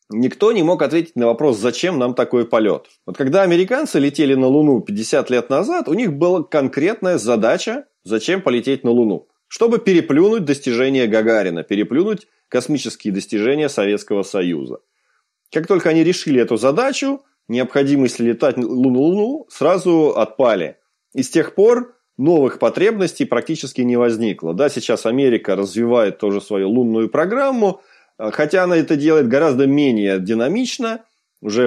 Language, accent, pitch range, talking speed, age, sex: Russian, native, 110-170 Hz, 140 wpm, 20-39, male